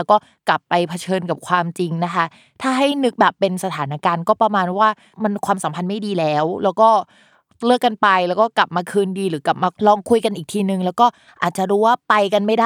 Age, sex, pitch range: 20-39, female, 170-220 Hz